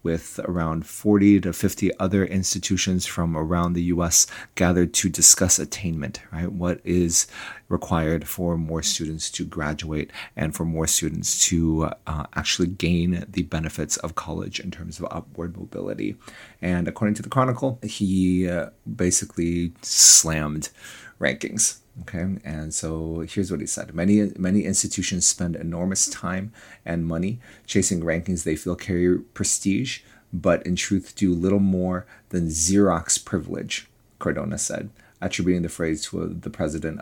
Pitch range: 85-100 Hz